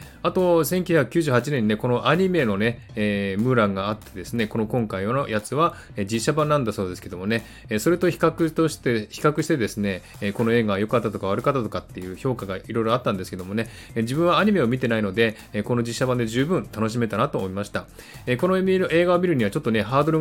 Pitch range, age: 100-130 Hz, 20-39